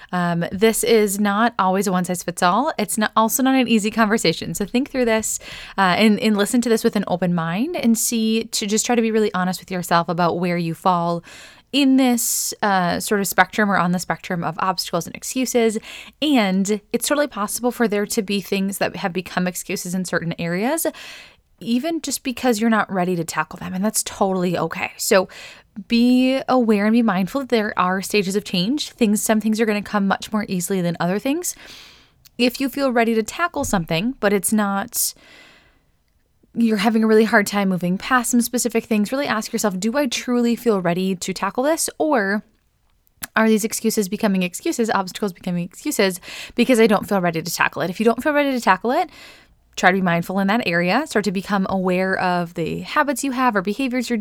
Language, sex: English, female